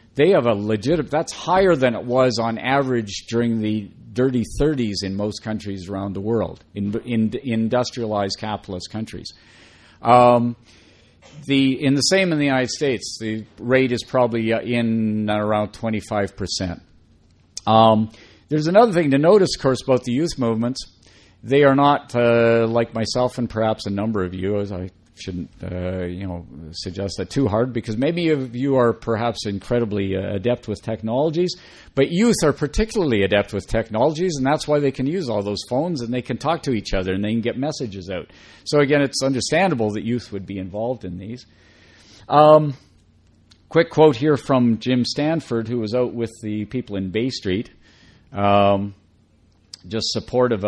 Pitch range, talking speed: 100-130 Hz, 175 wpm